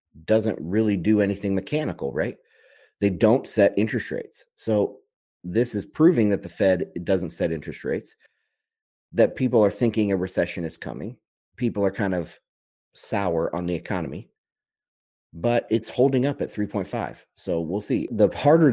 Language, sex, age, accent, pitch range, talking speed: English, male, 30-49, American, 90-110 Hz, 155 wpm